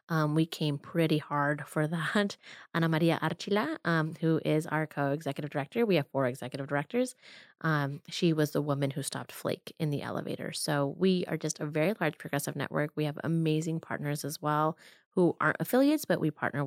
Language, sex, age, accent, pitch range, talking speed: English, female, 20-39, American, 145-165 Hz, 190 wpm